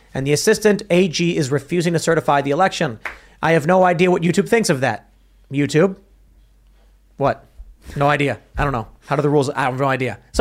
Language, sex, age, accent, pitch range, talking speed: English, male, 30-49, American, 145-190 Hz, 200 wpm